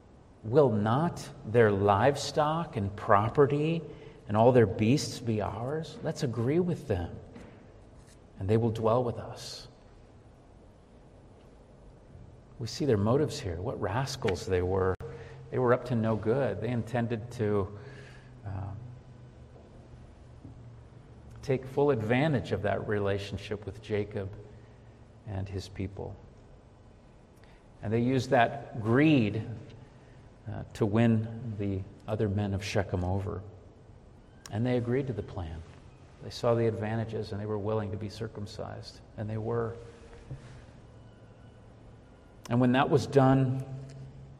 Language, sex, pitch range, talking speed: English, male, 110-135 Hz, 125 wpm